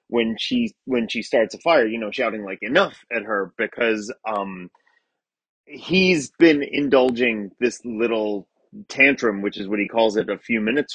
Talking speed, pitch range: 170 wpm, 110-145 Hz